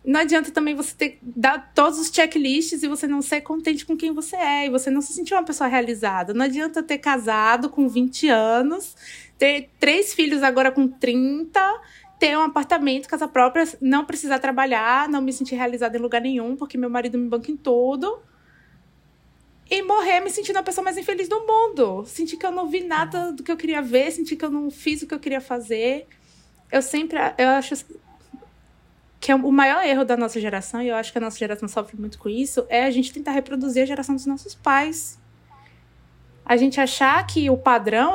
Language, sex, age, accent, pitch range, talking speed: Portuguese, female, 20-39, Brazilian, 240-315 Hz, 205 wpm